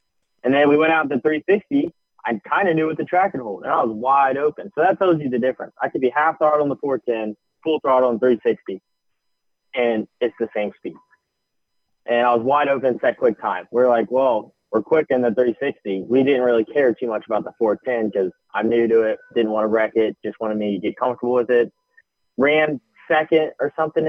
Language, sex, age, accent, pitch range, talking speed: English, male, 20-39, American, 115-150 Hz, 230 wpm